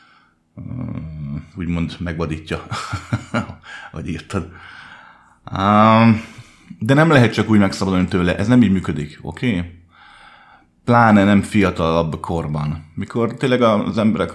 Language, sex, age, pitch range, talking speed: Hungarian, male, 30-49, 85-100 Hz, 105 wpm